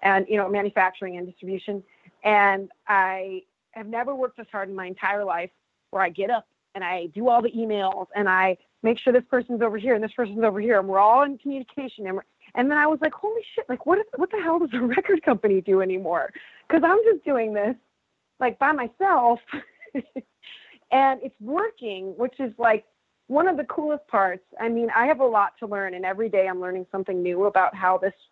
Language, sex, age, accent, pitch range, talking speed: English, female, 30-49, American, 195-250 Hz, 215 wpm